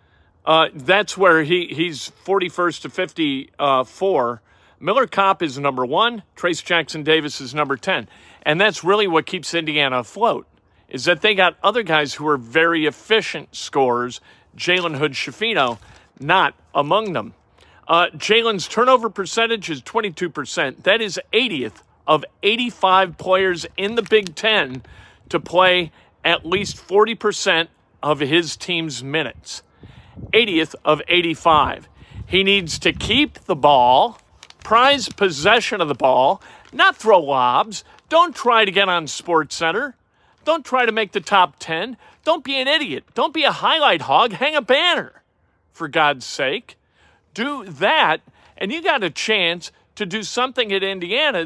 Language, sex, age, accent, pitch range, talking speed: English, male, 40-59, American, 155-215 Hz, 145 wpm